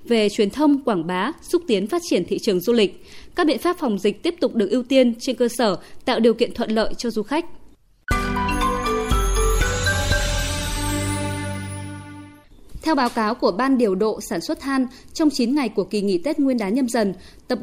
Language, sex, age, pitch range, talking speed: Vietnamese, female, 20-39, 210-280 Hz, 190 wpm